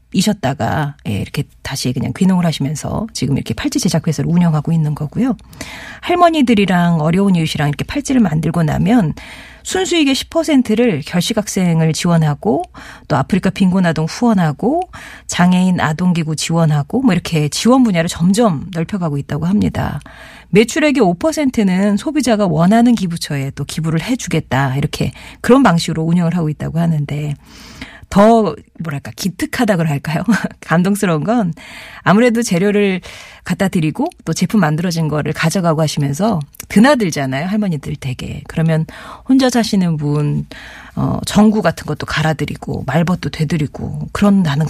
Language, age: Korean, 40-59